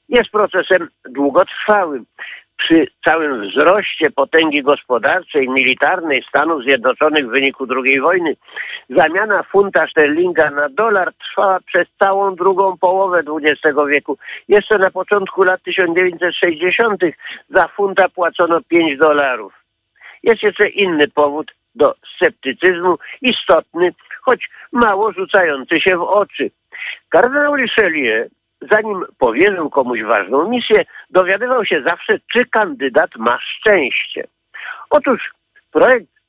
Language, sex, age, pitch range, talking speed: Polish, male, 50-69, 155-255 Hz, 110 wpm